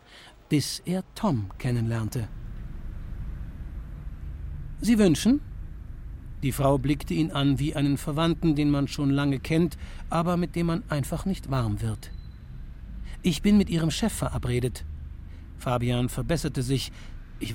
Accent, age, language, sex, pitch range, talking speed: German, 60-79, German, male, 110-155 Hz, 125 wpm